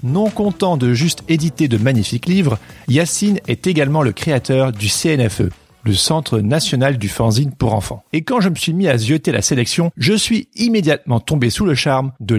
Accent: French